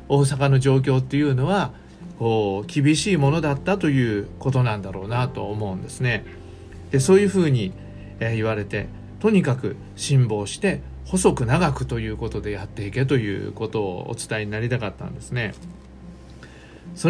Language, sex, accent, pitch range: Japanese, male, native, 105-155 Hz